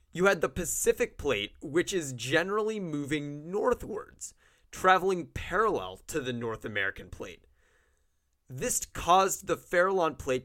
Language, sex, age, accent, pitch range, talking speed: English, male, 30-49, American, 130-205 Hz, 125 wpm